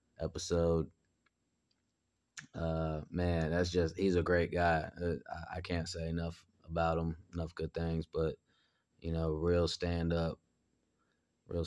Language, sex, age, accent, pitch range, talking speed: English, male, 20-39, American, 85-90 Hz, 125 wpm